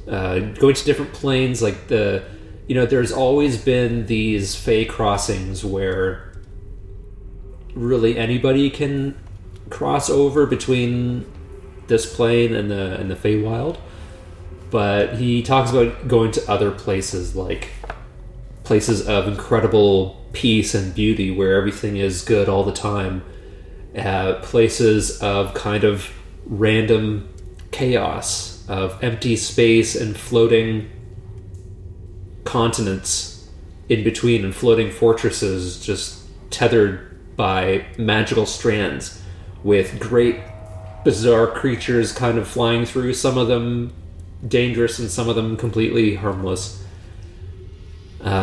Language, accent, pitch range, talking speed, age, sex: English, American, 95-115 Hz, 115 wpm, 30-49, male